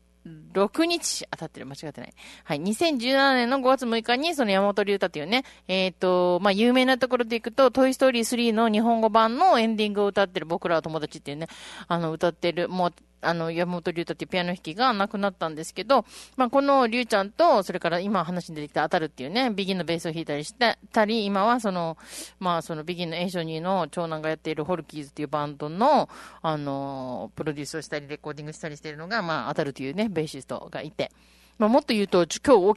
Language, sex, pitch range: Japanese, female, 160-235 Hz